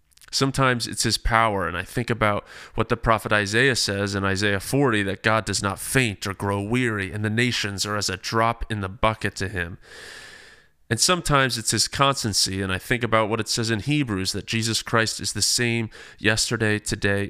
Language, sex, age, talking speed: English, male, 30-49, 200 wpm